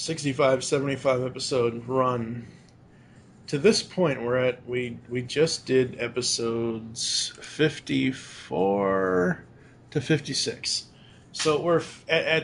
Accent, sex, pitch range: American, male, 120-150 Hz